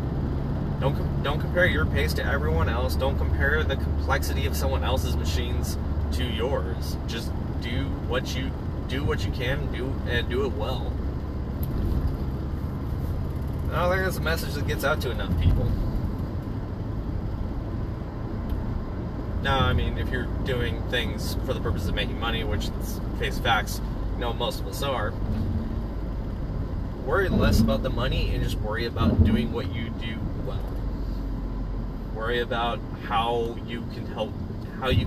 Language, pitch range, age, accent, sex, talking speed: English, 80-110 Hz, 30-49, American, male, 145 wpm